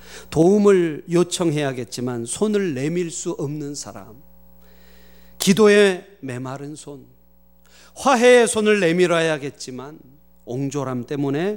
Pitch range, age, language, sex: 120-185 Hz, 40-59, Korean, male